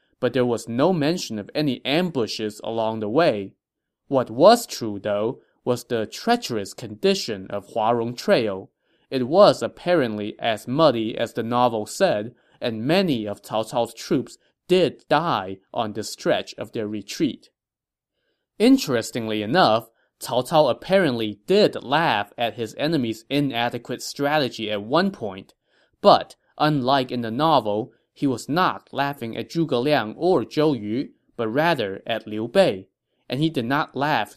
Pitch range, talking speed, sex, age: 110-150 Hz, 150 wpm, male, 20-39